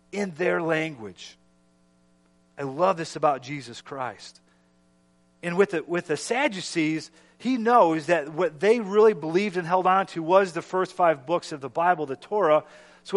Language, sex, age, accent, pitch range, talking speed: English, male, 40-59, American, 135-195 Hz, 170 wpm